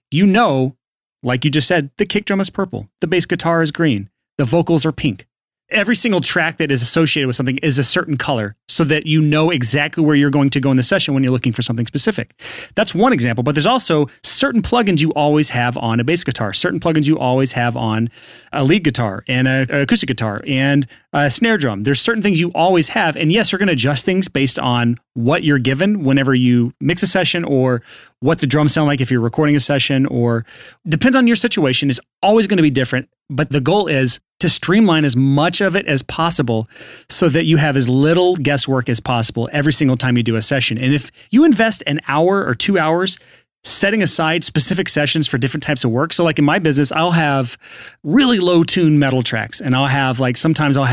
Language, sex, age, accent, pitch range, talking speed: English, male, 30-49, American, 130-170 Hz, 225 wpm